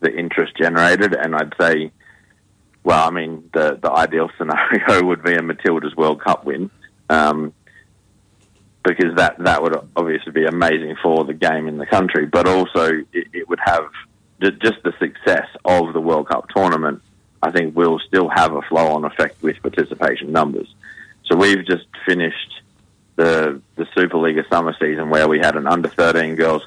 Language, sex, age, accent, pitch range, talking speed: English, male, 30-49, Australian, 80-90 Hz, 170 wpm